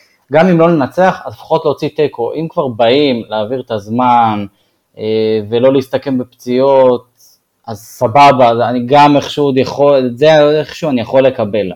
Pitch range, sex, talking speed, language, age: 110-140 Hz, male, 165 wpm, Hebrew, 20-39